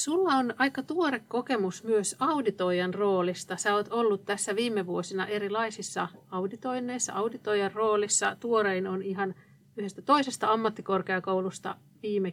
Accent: native